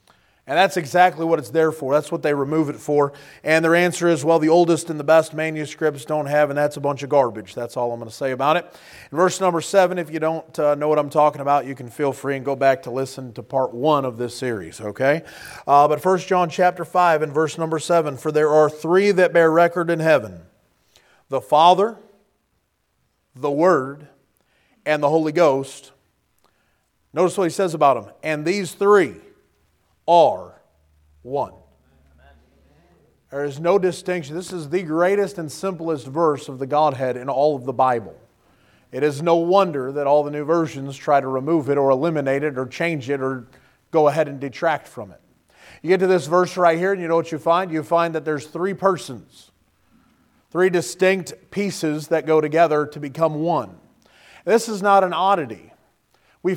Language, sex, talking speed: English, male, 195 wpm